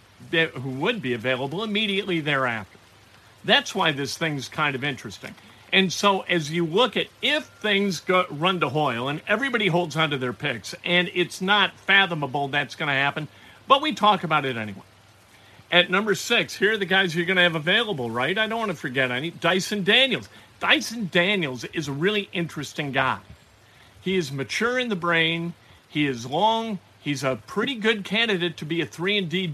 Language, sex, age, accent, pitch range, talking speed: English, male, 50-69, American, 130-195 Hz, 190 wpm